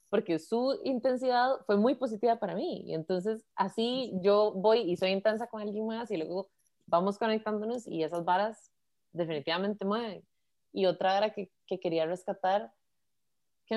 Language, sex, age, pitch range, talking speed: Spanish, female, 20-39, 180-230 Hz, 155 wpm